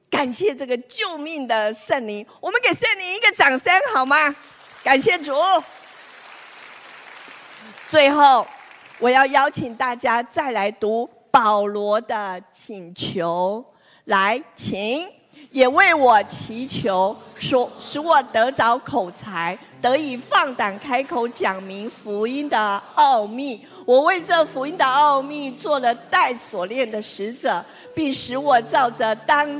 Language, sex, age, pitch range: Chinese, female, 50-69, 215-305 Hz